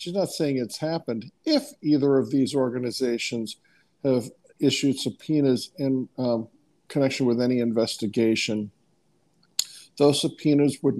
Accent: American